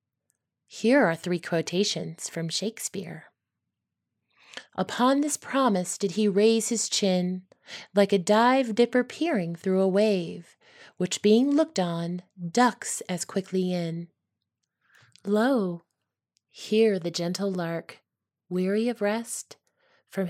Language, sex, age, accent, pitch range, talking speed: English, female, 20-39, American, 170-225 Hz, 110 wpm